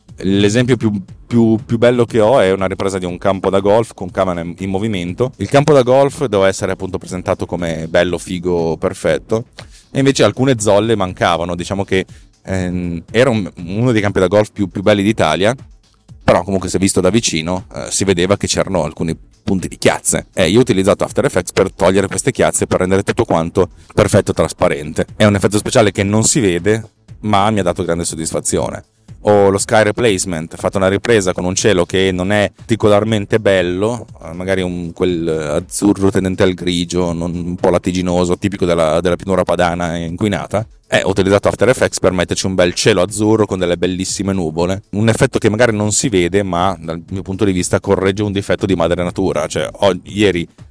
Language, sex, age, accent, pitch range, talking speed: Italian, male, 30-49, native, 90-105 Hz, 190 wpm